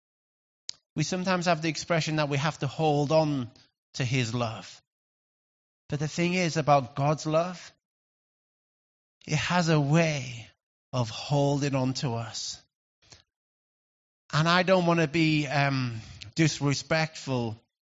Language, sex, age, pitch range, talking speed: English, male, 30-49, 145-215 Hz, 125 wpm